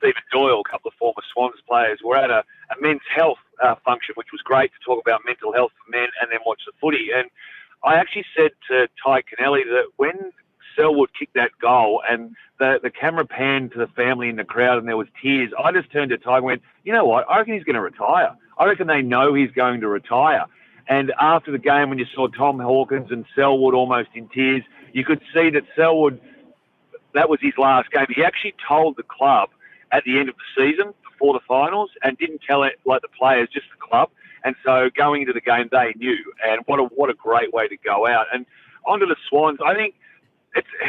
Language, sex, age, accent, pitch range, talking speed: English, male, 40-59, Australian, 125-180 Hz, 230 wpm